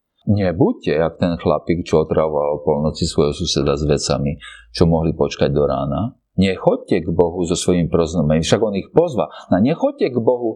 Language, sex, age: Slovak, male, 50-69